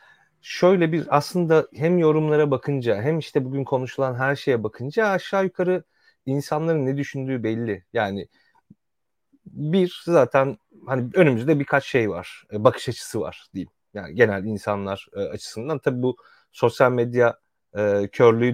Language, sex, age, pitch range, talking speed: Turkish, male, 30-49, 105-140 Hz, 130 wpm